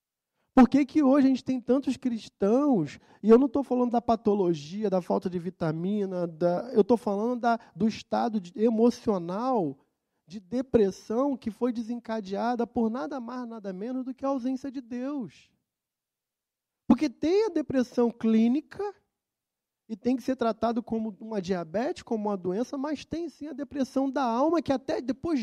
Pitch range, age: 210-275 Hz, 20-39